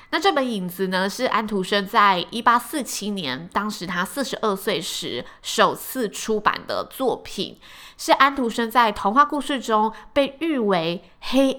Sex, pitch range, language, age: female, 185-245 Hz, Chinese, 20-39